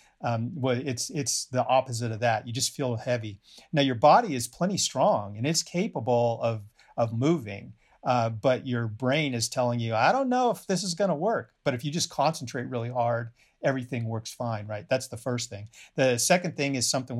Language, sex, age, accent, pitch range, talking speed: English, male, 40-59, American, 115-140 Hz, 210 wpm